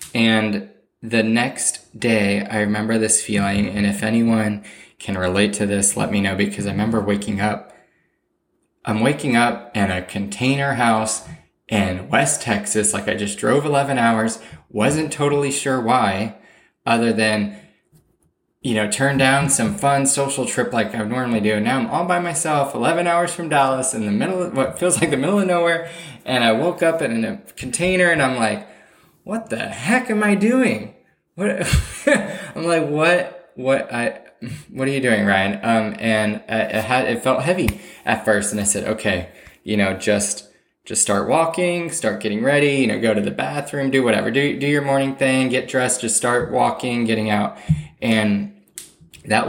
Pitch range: 105-140 Hz